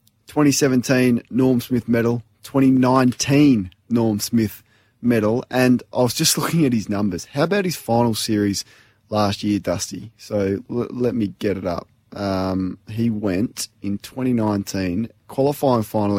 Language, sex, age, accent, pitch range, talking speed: English, male, 20-39, Australian, 105-125 Hz, 135 wpm